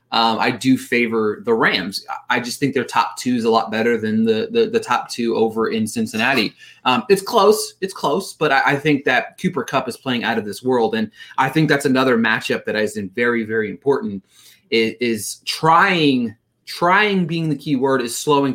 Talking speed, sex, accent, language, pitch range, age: 210 wpm, male, American, English, 135-210 Hz, 30-49